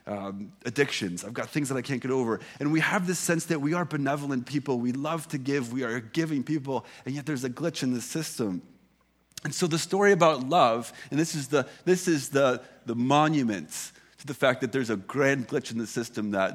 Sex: male